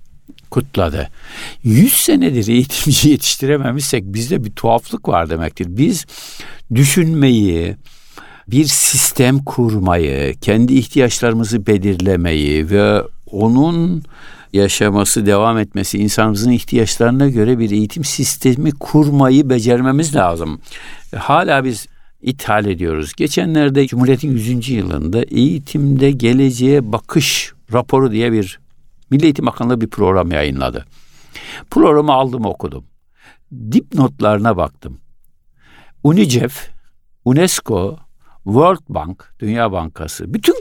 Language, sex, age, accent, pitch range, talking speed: Turkish, male, 60-79, native, 100-145 Hz, 95 wpm